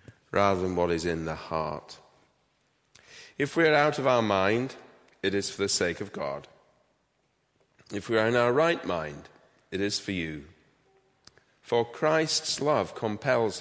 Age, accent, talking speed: 40-59, British, 160 wpm